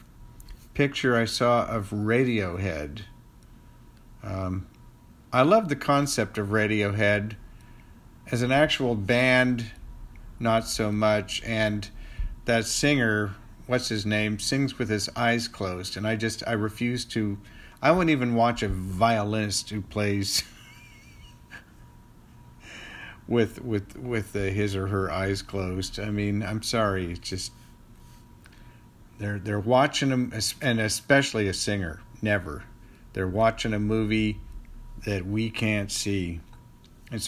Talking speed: 120 wpm